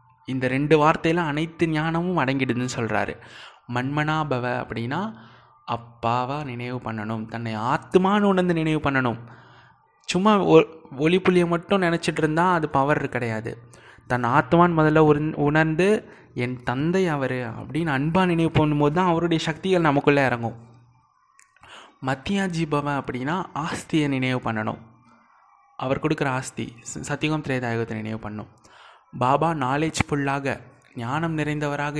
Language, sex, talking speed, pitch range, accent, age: Tamil, male, 110 wpm, 125-165 Hz, native, 20-39